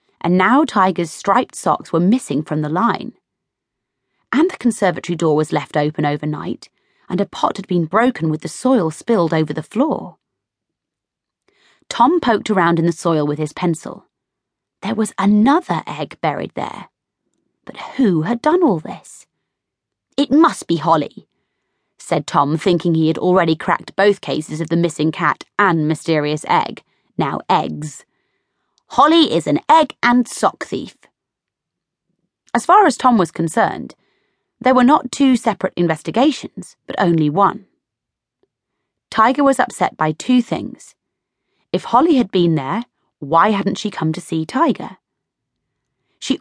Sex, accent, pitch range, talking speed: female, British, 160-240 Hz, 150 wpm